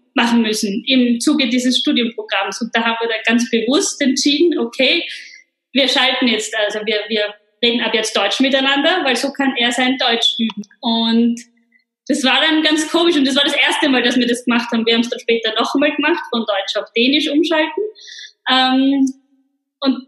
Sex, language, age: female, English, 20-39